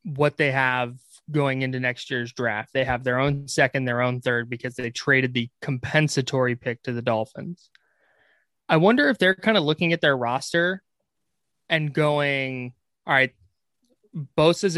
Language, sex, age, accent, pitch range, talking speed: English, male, 20-39, American, 130-165 Hz, 160 wpm